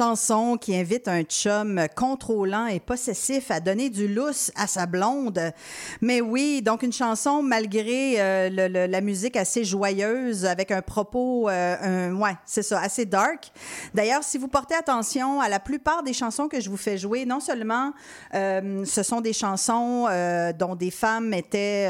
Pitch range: 190-250 Hz